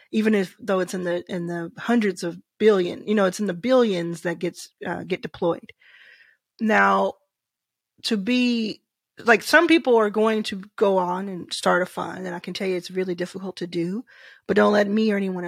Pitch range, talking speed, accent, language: 185-230 Hz, 205 wpm, American, English